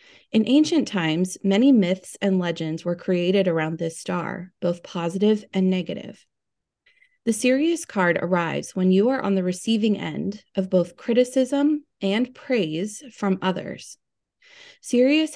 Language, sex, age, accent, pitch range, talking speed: English, female, 20-39, American, 185-245 Hz, 135 wpm